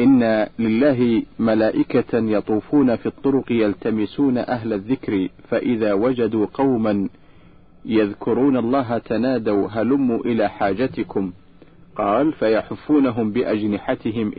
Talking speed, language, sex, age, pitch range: 90 wpm, Arabic, male, 50-69, 110-145 Hz